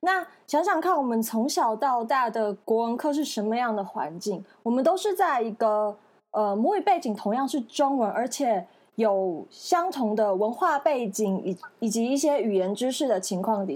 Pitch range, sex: 205-295 Hz, female